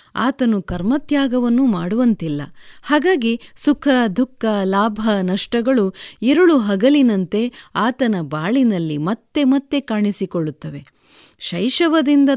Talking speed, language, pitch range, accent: 80 wpm, Kannada, 195-270 Hz, native